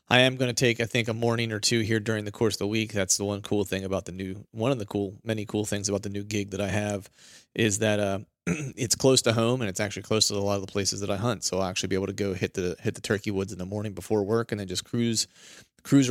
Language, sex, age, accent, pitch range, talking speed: English, male, 30-49, American, 105-120 Hz, 310 wpm